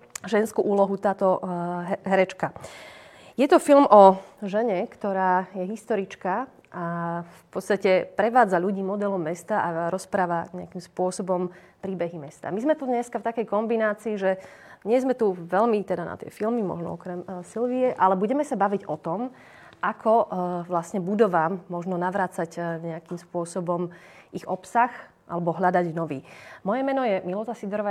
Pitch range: 175-210 Hz